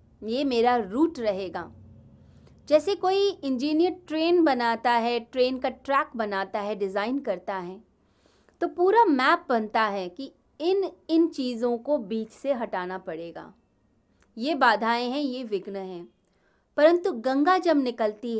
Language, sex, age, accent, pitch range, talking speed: Hindi, female, 30-49, native, 205-285 Hz, 135 wpm